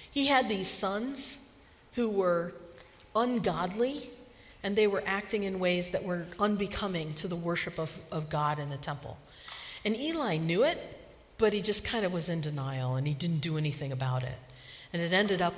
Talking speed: 185 wpm